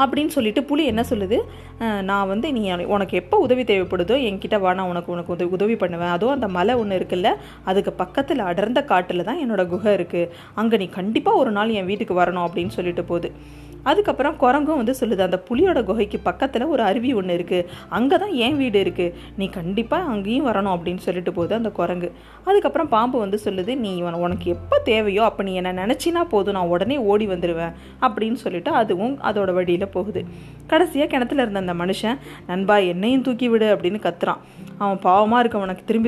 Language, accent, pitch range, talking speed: Tamil, native, 185-245 Hz, 180 wpm